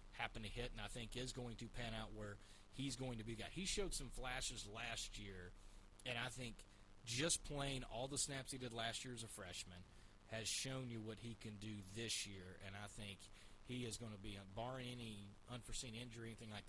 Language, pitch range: English, 100-125 Hz